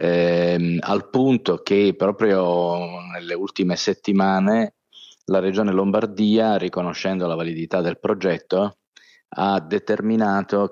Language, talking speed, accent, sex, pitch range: Italian, 100 wpm, native, male, 85-105 Hz